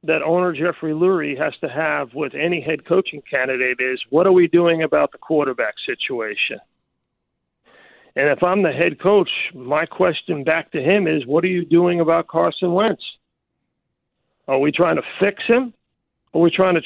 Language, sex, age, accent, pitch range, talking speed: English, male, 50-69, American, 160-200 Hz, 180 wpm